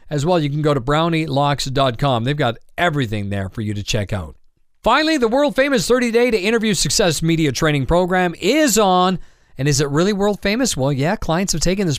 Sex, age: male, 40-59